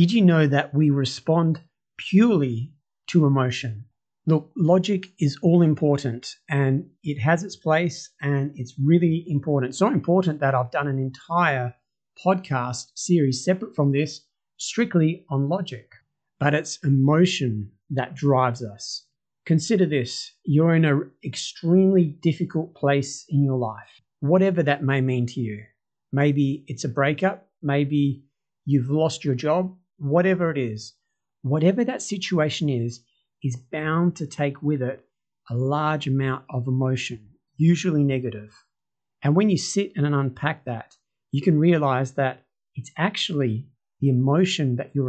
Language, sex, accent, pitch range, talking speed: English, male, Australian, 130-165 Hz, 140 wpm